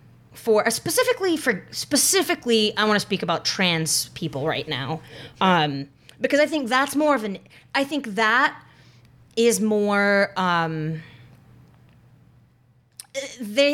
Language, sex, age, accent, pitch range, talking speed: English, female, 20-39, American, 150-220 Hz, 120 wpm